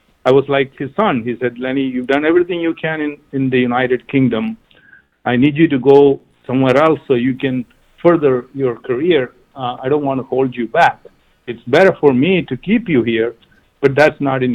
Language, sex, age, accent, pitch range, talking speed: English, male, 50-69, Indian, 125-150 Hz, 210 wpm